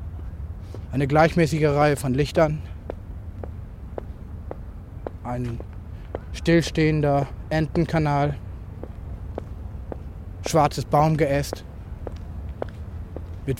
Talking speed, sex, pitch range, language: 50 wpm, male, 85-140 Hz, English